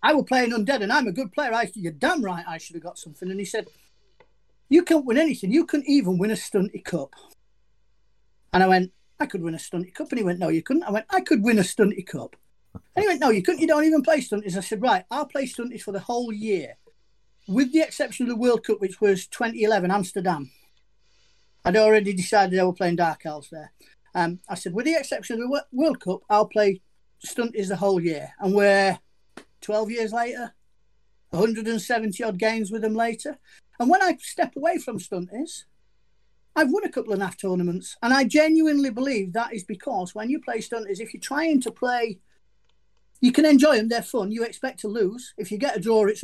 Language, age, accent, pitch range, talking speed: English, 40-59, British, 195-270 Hz, 220 wpm